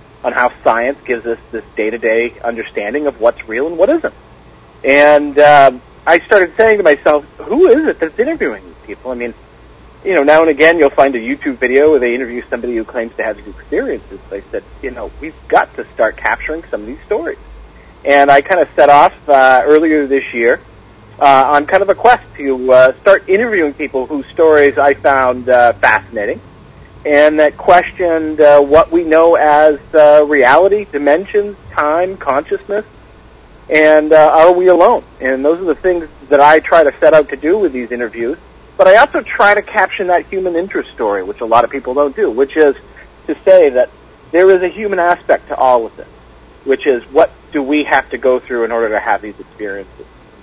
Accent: American